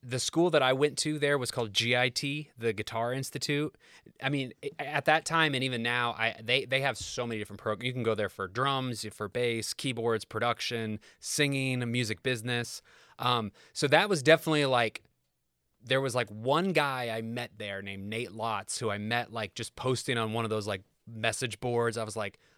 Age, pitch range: 20-39, 110-130 Hz